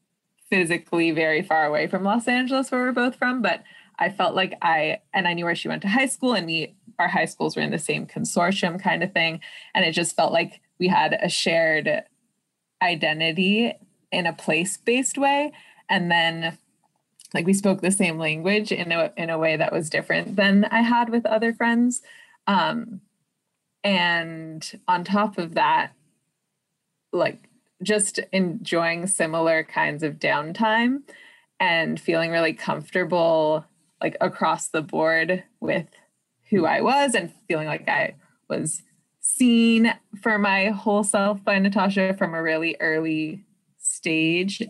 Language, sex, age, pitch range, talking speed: English, female, 20-39, 170-220 Hz, 155 wpm